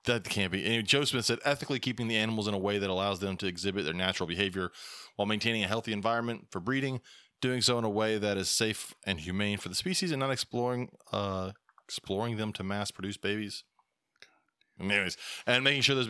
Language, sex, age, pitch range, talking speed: English, male, 20-39, 90-115 Hz, 215 wpm